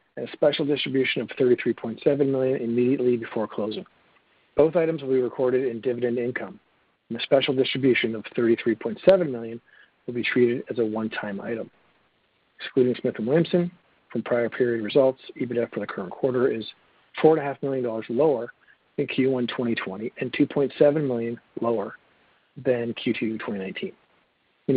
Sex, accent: male, American